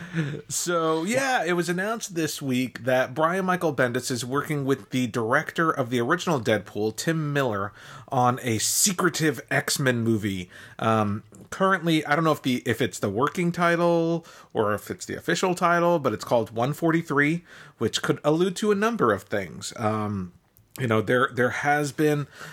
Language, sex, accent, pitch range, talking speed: English, male, American, 115-150 Hz, 170 wpm